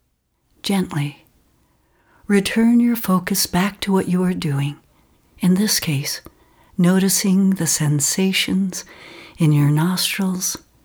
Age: 60-79